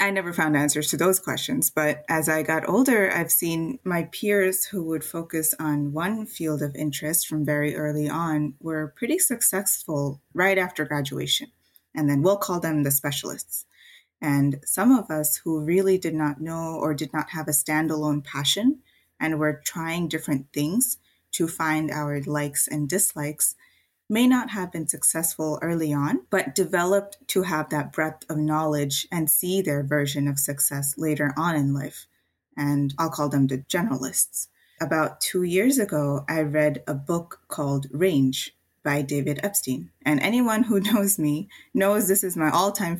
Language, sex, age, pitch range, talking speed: English, female, 20-39, 150-180 Hz, 170 wpm